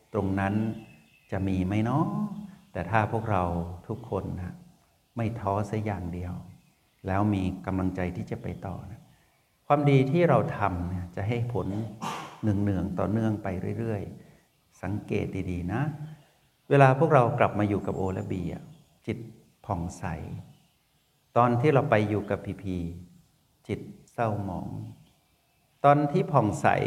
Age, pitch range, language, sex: 60-79, 95-125 Hz, Thai, male